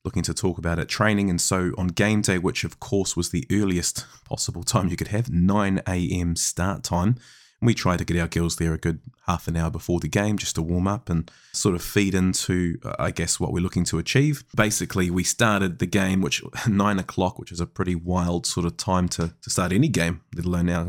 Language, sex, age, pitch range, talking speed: English, male, 20-39, 90-110 Hz, 235 wpm